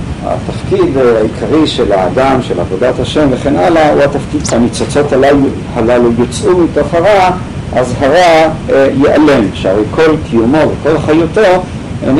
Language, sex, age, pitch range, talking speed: Hebrew, male, 50-69, 115-140 Hz, 130 wpm